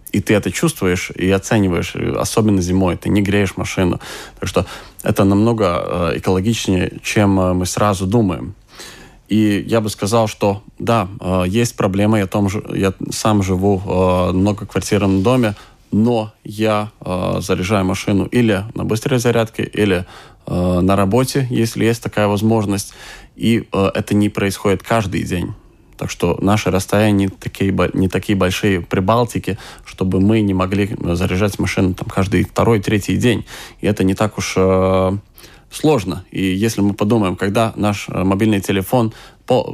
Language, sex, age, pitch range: Russian, male, 20-39, 95-110 Hz